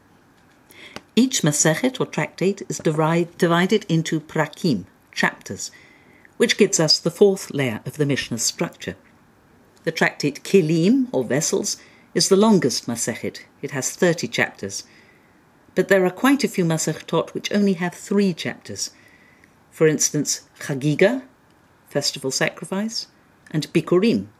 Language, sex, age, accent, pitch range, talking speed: English, female, 50-69, British, 135-195 Hz, 125 wpm